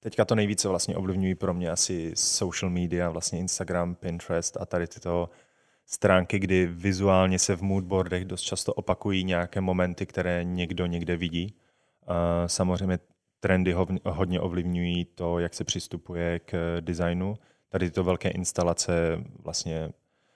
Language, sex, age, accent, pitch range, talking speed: Czech, male, 20-39, native, 85-95 Hz, 135 wpm